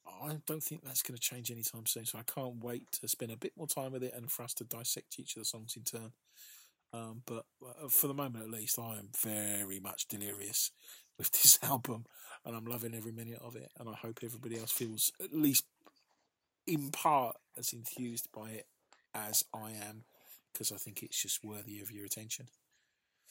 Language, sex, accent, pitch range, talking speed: English, male, British, 115-135 Hz, 205 wpm